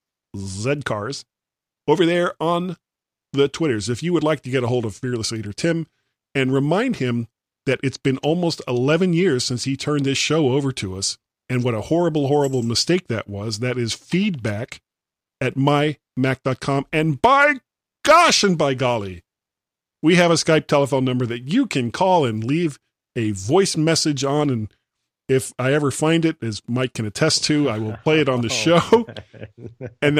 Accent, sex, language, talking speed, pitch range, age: American, male, English, 180 wpm, 120-160 Hz, 40-59